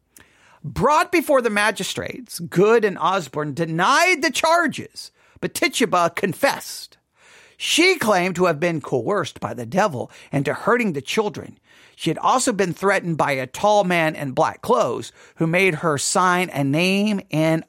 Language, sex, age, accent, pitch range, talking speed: English, male, 50-69, American, 160-220 Hz, 155 wpm